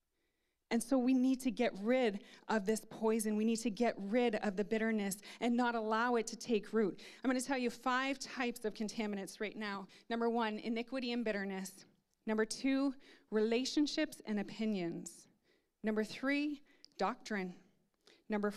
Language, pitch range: English, 205-255 Hz